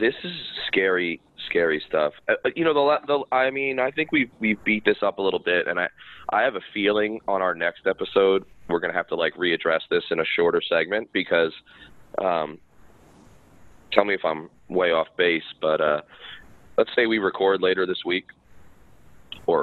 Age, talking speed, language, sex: 20-39, 190 wpm, English, male